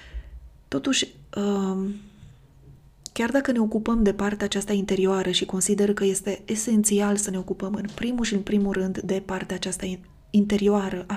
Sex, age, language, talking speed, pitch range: female, 20-39, Romanian, 150 wpm, 190-215 Hz